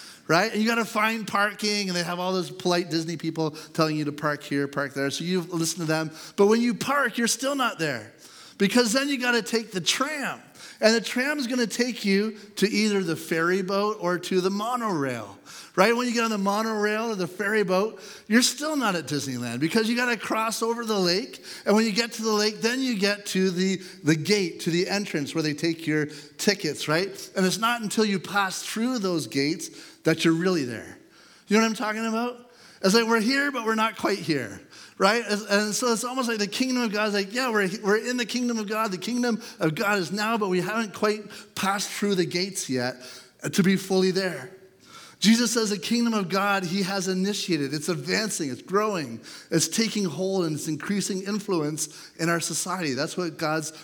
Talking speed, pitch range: 220 wpm, 170-220 Hz